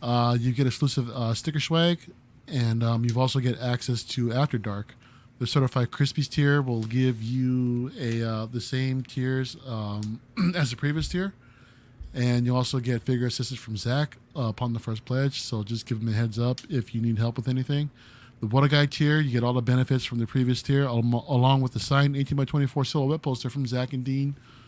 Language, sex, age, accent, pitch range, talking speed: English, male, 20-39, American, 120-135 Hz, 210 wpm